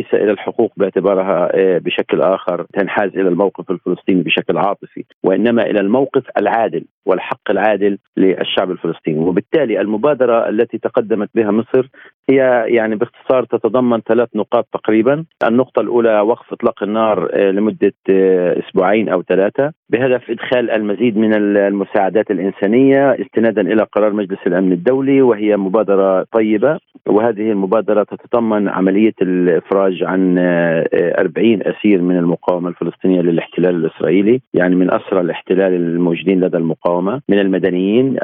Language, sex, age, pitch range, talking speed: Arabic, male, 40-59, 95-115 Hz, 120 wpm